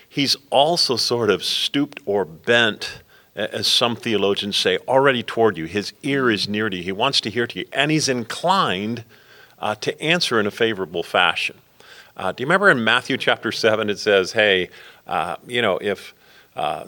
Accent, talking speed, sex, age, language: American, 185 wpm, male, 40-59, English